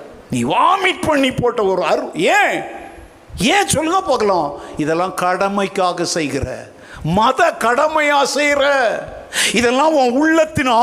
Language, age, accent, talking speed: Tamil, 60-79, native, 100 wpm